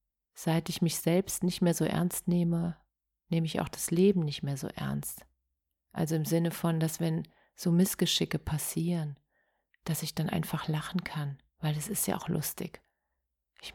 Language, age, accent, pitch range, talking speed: German, 40-59, German, 150-175 Hz, 175 wpm